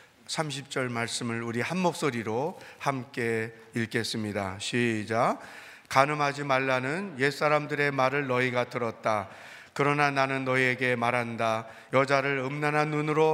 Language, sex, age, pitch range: Korean, male, 30-49, 120-145 Hz